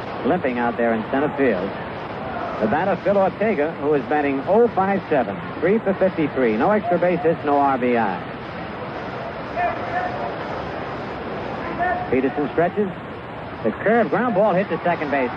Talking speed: 115 wpm